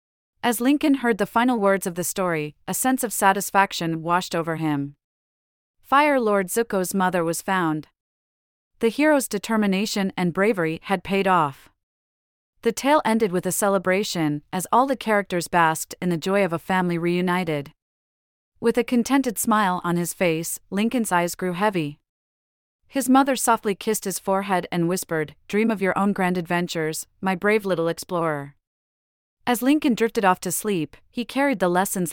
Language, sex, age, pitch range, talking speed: English, female, 30-49, 165-210 Hz, 165 wpm